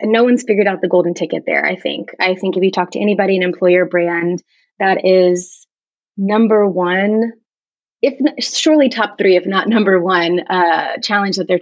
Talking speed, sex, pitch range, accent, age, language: 190 wpm, female, 175-205 Hz, American, 20-39, English